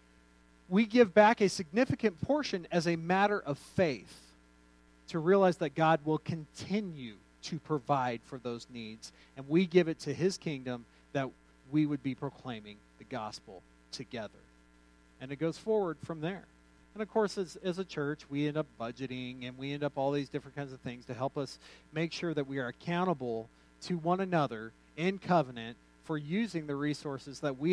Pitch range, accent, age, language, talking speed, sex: 125-180 Hz, American, 40-59, English, 180 wpm, male